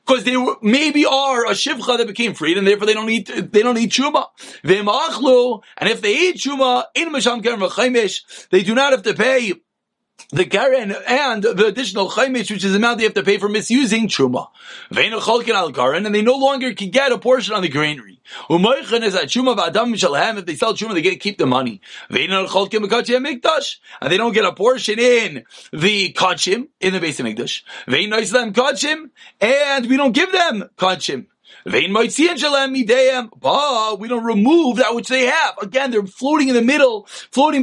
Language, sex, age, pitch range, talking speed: English, male, 30-49, 205-260 Hz, 180 wpm